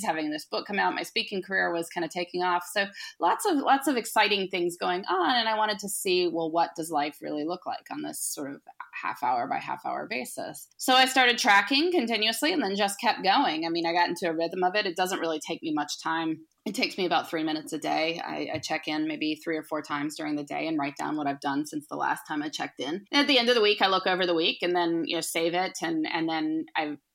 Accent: American